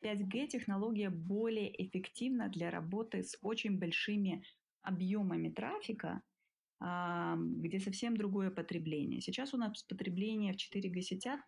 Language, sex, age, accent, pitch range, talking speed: Ukrainian, female, 20-39, native, 180-225 Hz, 115 wpm